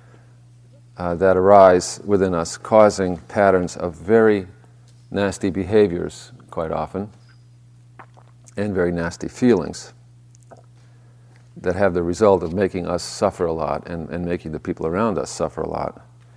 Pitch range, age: 90-120 Hz, 50-69